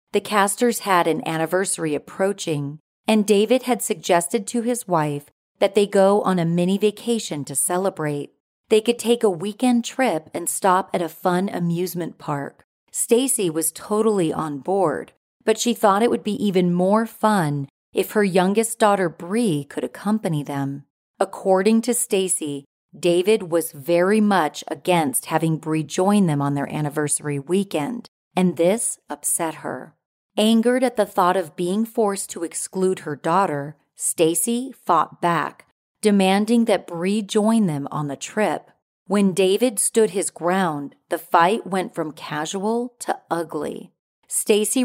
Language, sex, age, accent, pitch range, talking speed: English, female, 40-59, American, 165-215 Hz, 150 wpm